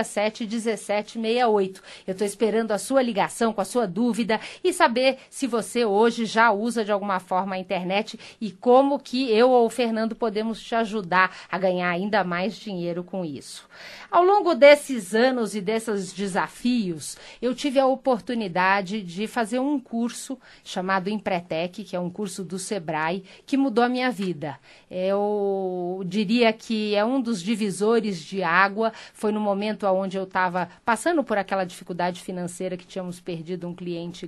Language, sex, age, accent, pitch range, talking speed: Portuguese, female, 40-59, Brazilian, 190-240 Hz, 165 wpm